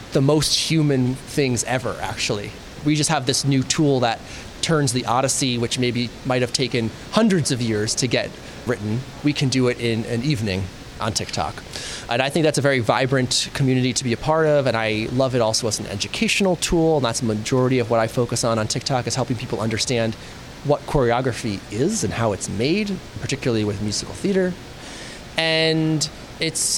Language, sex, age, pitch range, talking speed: English, male, 30-49, 120-155 Hz, 195 wpm